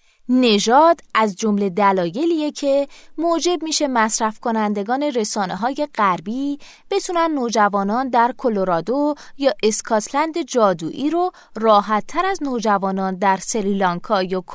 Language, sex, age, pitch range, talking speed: Persian, female, 20-39, 200-265 Hz, 105 wpm